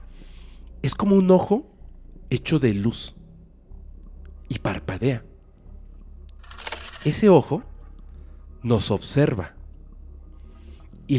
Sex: male